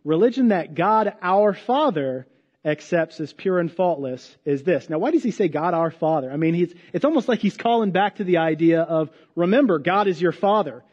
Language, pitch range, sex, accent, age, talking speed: English, 155-200 Hz, male, American, 40-59, 205 wpm